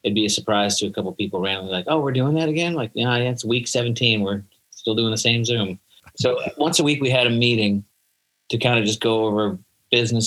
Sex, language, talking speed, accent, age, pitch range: male, English, 245 wpm, American, 30-49, 100-120 Hz